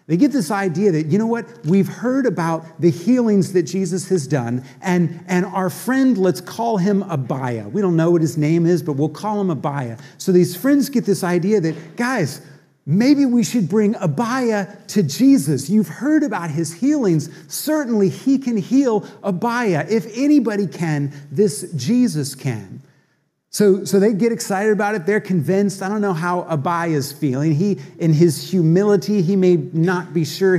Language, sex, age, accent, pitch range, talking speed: English, male, 40-59, American, 155-210 Hz, 180 wpm